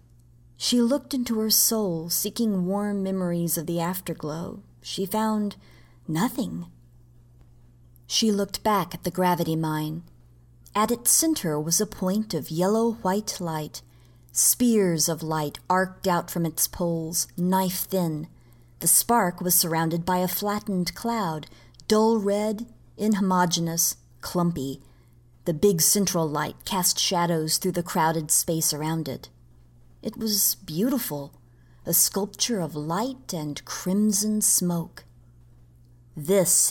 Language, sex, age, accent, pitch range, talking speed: English, female, 40-59, American, 140-200 Hz, 120 wpm